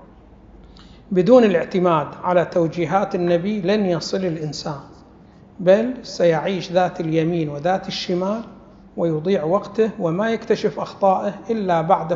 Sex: male